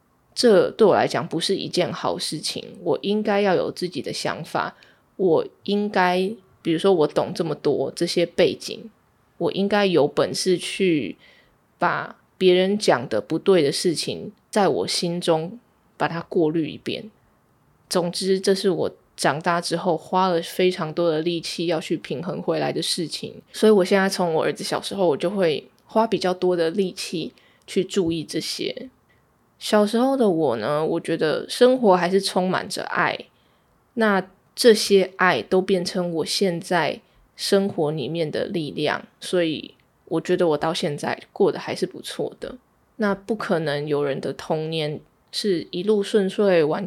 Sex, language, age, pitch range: female, Chinese, 20-39, 170-205 Hz